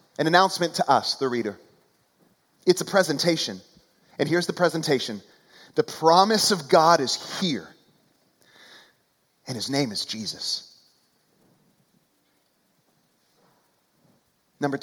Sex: male